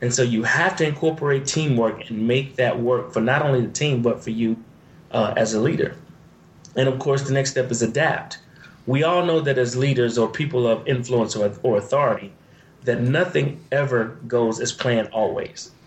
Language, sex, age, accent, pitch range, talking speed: English, male, 30-49, American, 115-155 Hz, 195 wpm